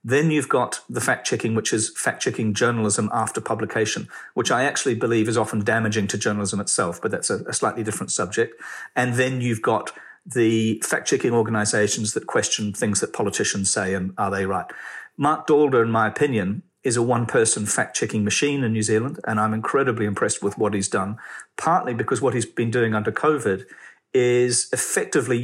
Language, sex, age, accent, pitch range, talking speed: English, male, 40-59, British, 105-125 Hz, 180 wpm